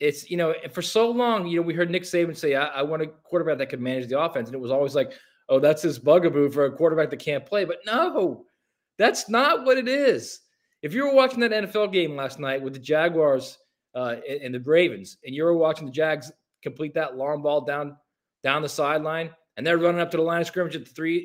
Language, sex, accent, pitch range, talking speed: English, male, American, 150-185 Hz, 250 wpm